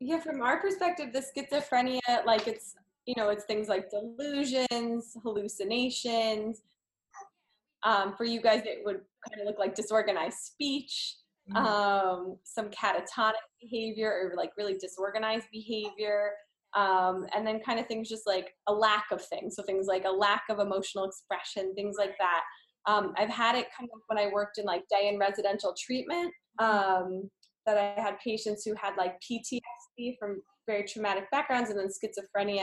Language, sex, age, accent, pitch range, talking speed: English, female, 20-39, American, 195-225 Hz, 165 wpm